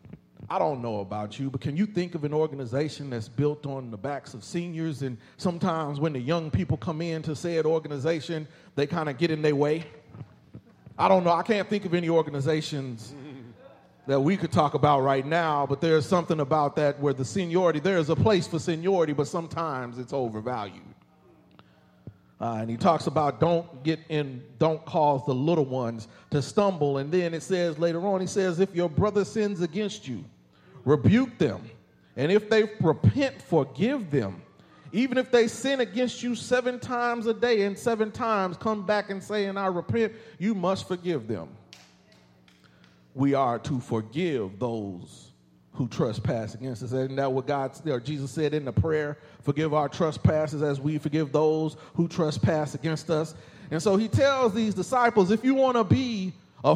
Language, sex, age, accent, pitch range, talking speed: English, male, 30-49, American, 135-185 Hz, 185 wpm